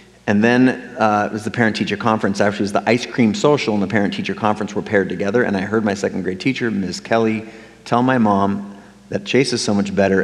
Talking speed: 235 wpm